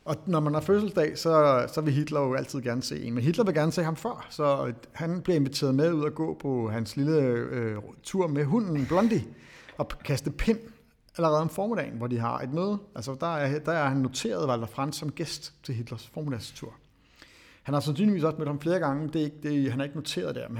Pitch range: 120-155 Hz